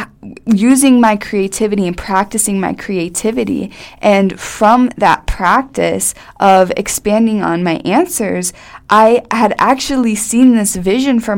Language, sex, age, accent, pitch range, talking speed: English, female, 20-39, American, 180-225 Hz, 120 wpm